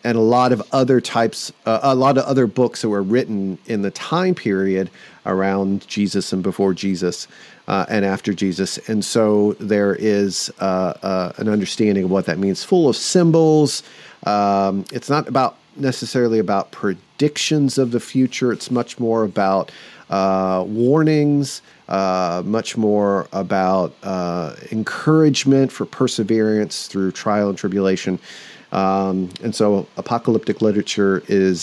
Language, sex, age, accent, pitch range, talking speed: English, male, 40-59, American, 95-115 Hz, 145 wpm